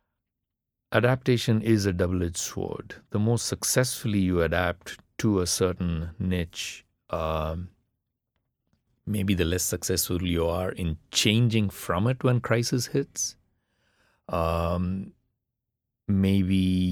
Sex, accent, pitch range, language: male, Indian, 90-110 Hz, English